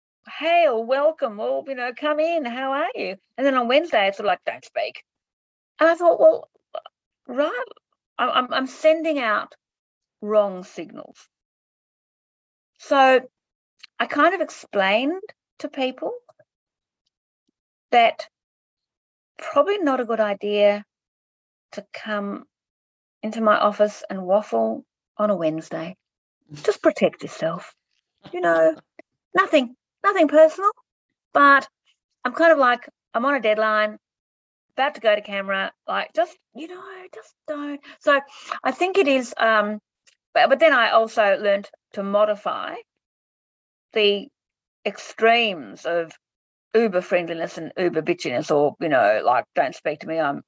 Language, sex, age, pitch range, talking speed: English, female, 40-59, 205-310 Hz, 135 wpm